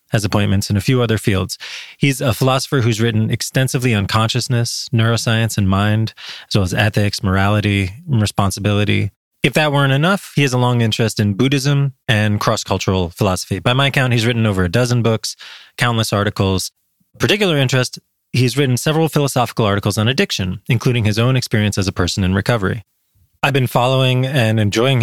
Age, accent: 20-39, American